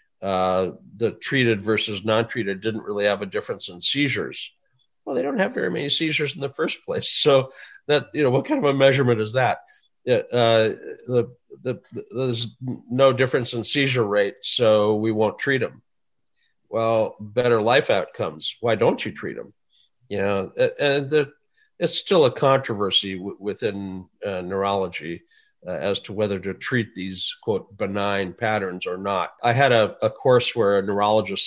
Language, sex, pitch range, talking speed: English, male, 95-130 Hz, 170 wpm